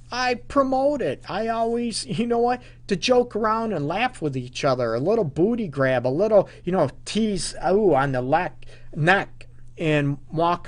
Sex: male